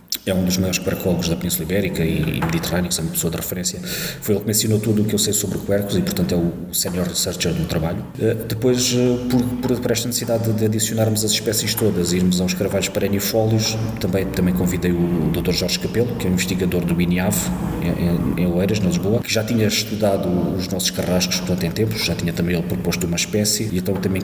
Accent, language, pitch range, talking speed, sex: Portuguese, Portuguese, 90-105 Hz, 215 wpm, male